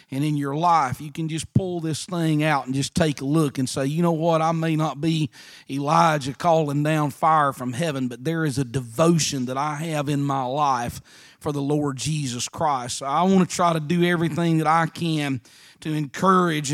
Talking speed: 215 wpm